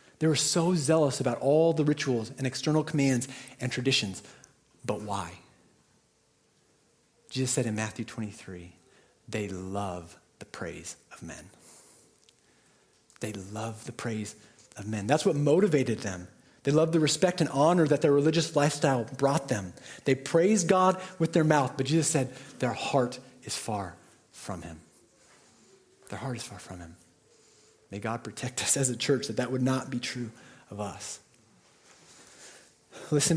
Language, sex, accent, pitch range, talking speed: English, male, American, 115-150 Hz, 155 wpm